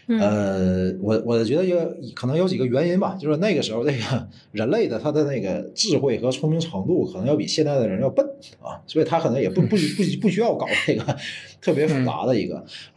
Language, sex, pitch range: Chinese, male, 105-155 Hz